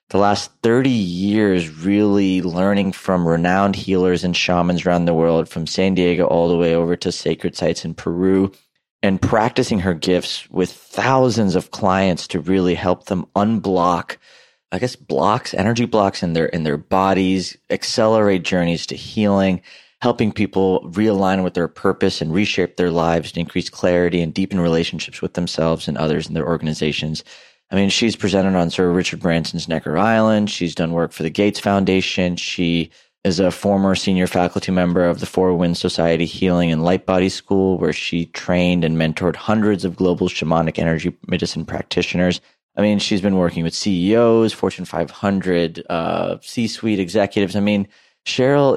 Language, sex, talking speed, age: English, male, 170 wpm, 30-49